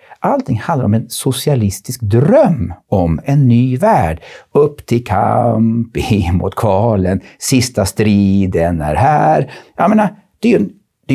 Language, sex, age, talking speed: Swedish, male, 60-79, 140 wpm